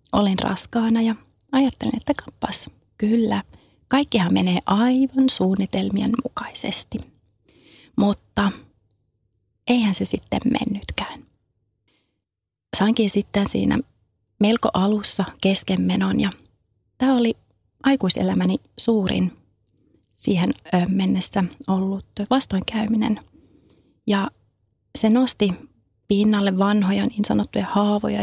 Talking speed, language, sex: 85 wpm, Finnish, female